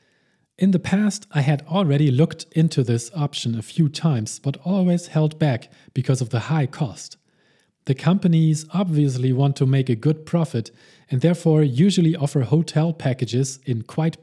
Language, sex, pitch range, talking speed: English, male, 130-165 Hz, 165 wpm